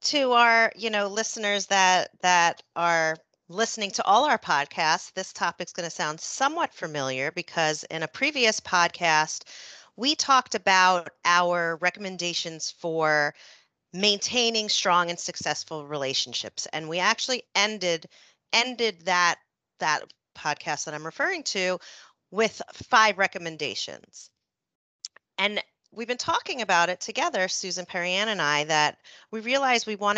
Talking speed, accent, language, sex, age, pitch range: 135 wpm, American, English, female, 40-59, 165-215 Hz